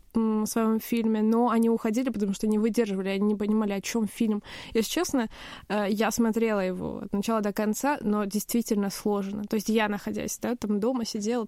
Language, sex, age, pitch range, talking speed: Russian, female, 20-39, 210-235 Hz, 185 wpm